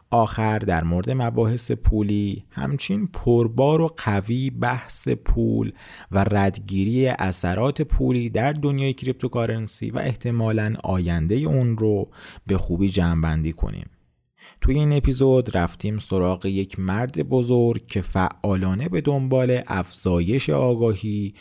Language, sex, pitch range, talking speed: Persian, male, 95-130 Hz, 115 wpm